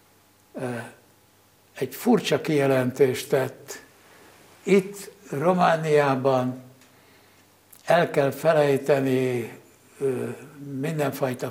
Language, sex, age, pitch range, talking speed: Hungarian, male, 60-79, 130-155 Hz, 50 wpm